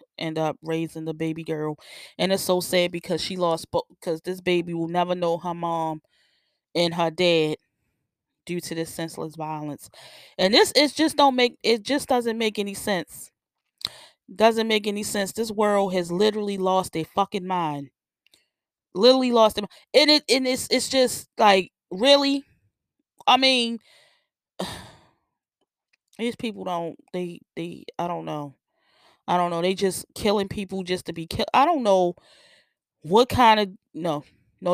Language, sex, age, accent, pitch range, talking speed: English, female, 20-39, American, 165-215 Hz, 160 wpm